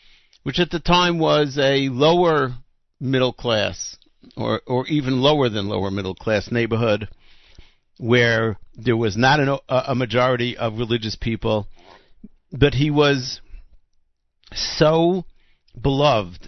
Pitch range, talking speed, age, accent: 110-135 Hz, 115 wpm, 60-79, American